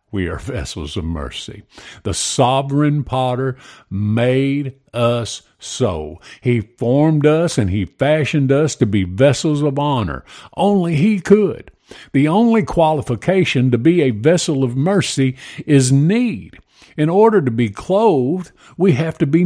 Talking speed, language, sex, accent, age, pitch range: 140 wpm, English, male, American, 50-69, 115-170 Hz